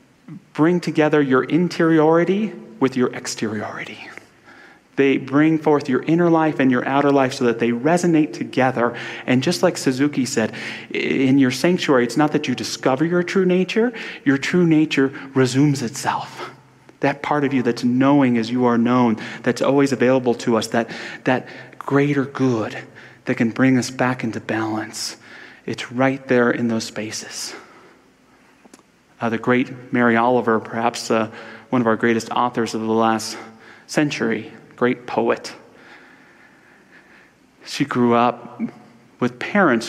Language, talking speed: English, 145 wpm